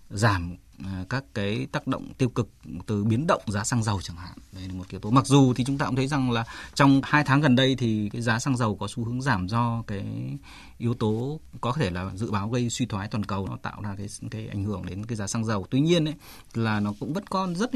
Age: 20-39